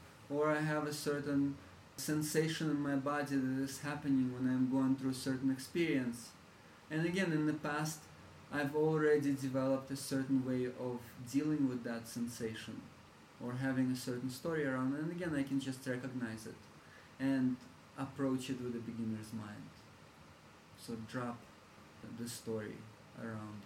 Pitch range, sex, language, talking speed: 125-150 Hz, male, English, 155 wpm